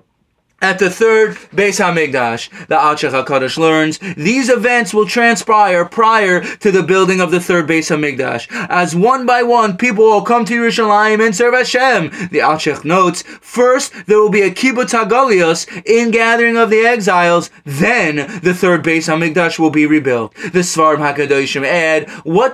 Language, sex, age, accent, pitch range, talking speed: English, male, 20-39, American, 185-245 Hz, 165 wpm